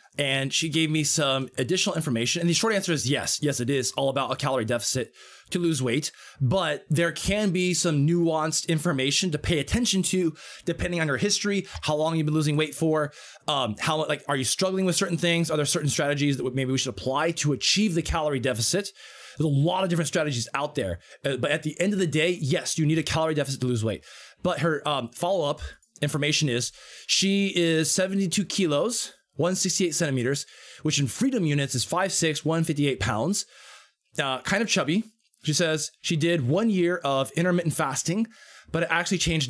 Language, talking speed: English, 200 wpm